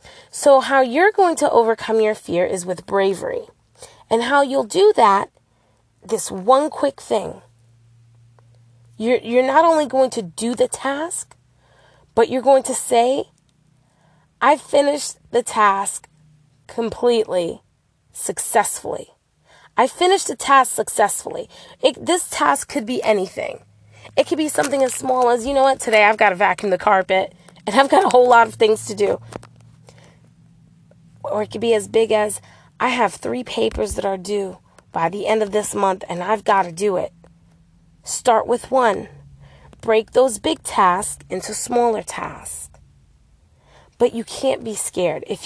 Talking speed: 160 wpm